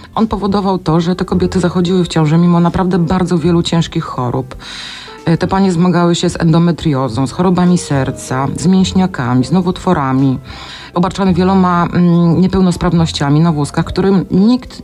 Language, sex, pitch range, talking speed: Polish, female, 150-185 Hz, 140 wpm